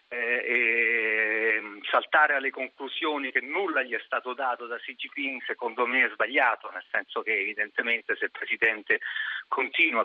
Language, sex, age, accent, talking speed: Italian, male, 40-59, native, 150 wpm